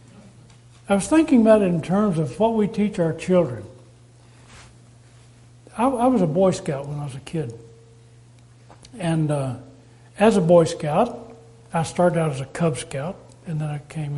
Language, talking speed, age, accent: English, 175 wpm, 60-79, American